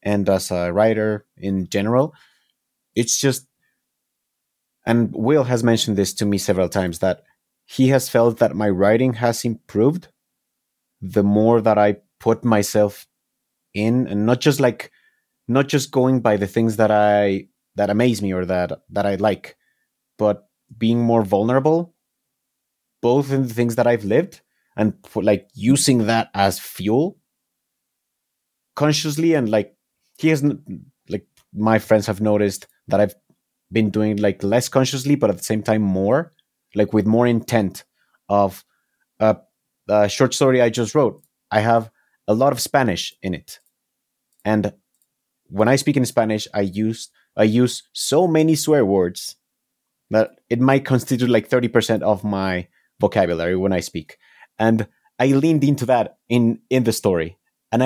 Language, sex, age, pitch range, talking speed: English, male, 30-49, 105-130 Hz, 155 wpm